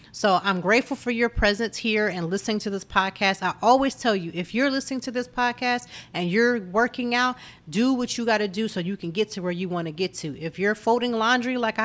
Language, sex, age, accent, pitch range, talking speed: English, female, 40-59, American, 180-230 Hz, 245 wpm